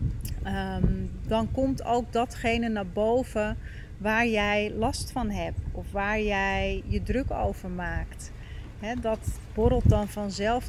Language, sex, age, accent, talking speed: Dutch, female, 40-59, Dutch, 125 wpm